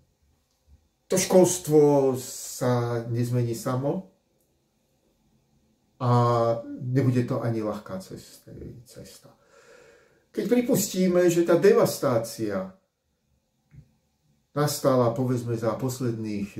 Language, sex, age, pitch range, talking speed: Slovak, male, 50-69, 115-145 Hz, 70 wpm